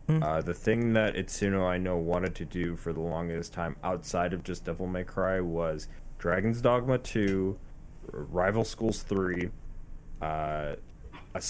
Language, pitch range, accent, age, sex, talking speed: English, 85-110 Hz, American, 20-39, male, 150 wpm